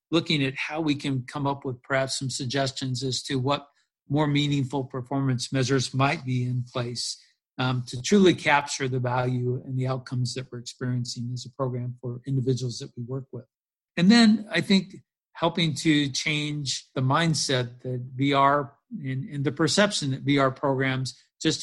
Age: 50-69